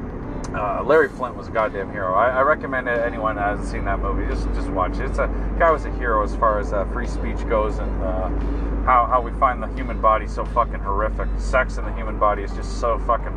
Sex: male